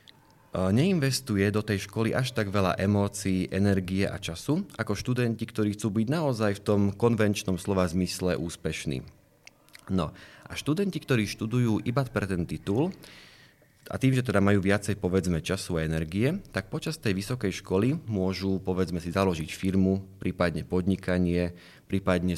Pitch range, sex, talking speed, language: 90-115 Hz, male, 150 wpm, Slovak